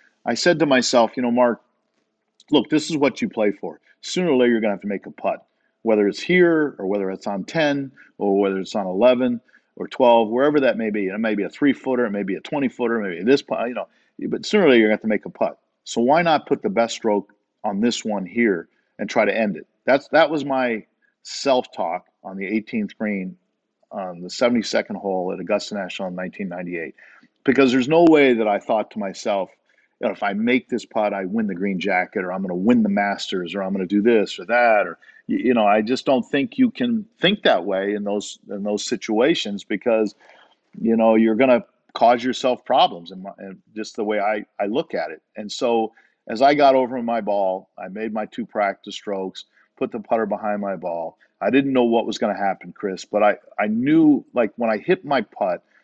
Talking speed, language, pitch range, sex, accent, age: 235 wpm, English, 100-130 Hz, male, American, 50-69